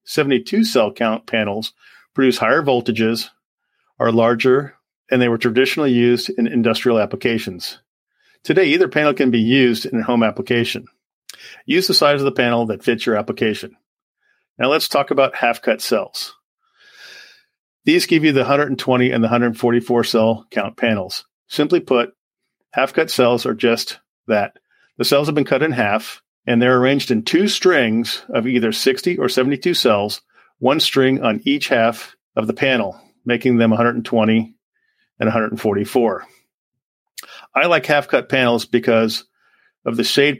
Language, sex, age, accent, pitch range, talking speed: English, male, 40-59, American, 115-145 Hz, 150 wpm